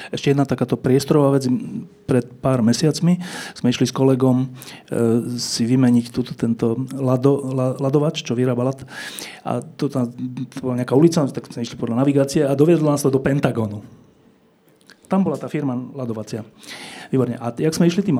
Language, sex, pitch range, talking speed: Slovak, male, 120-165 Hz, 160 wpm